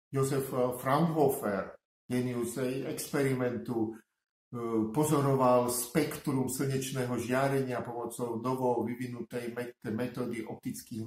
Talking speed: 70 wpm